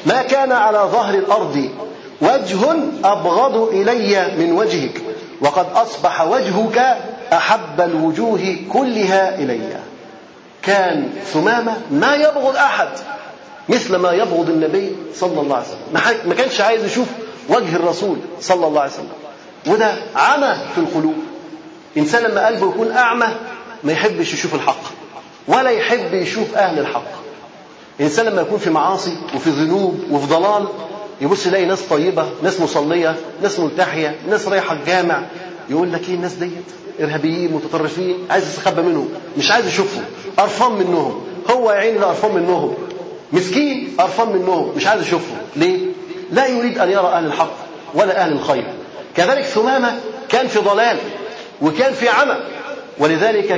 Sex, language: male, Arabic